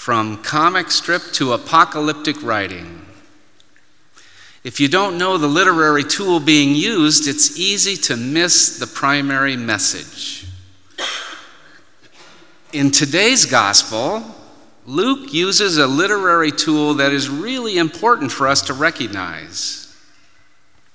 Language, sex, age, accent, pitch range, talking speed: English, male, 50-69, American, 140-195 Hz, 110 wpm